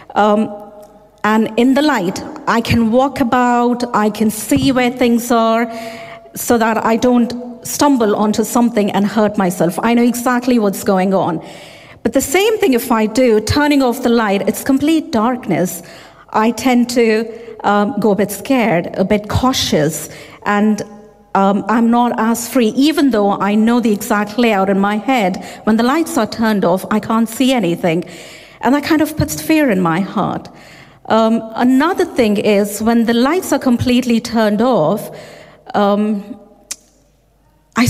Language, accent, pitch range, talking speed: English, Indian, 205-250 Hz, 165 wpm